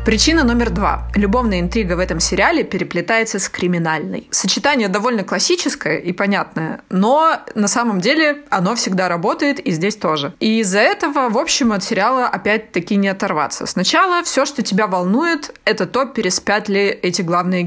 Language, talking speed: Russian, 160 wpm